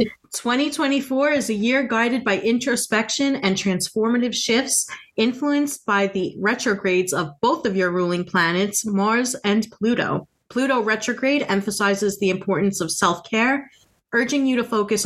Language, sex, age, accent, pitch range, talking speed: English, female, 30-49, American, 185-230 Hz, 140 wpm